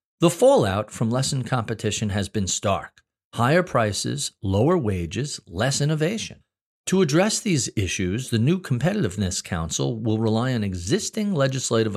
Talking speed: 135 wpm